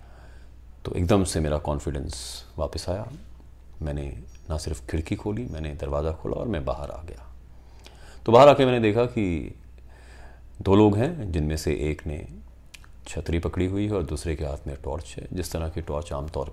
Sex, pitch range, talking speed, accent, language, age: male, 65-85 Hz, 180 wpm, native, Hindi, 30-49